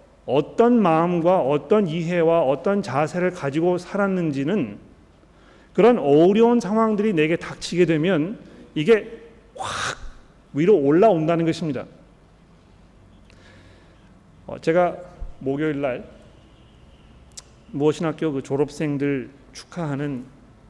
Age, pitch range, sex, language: 40-59, 130-170 Hz, male, Korean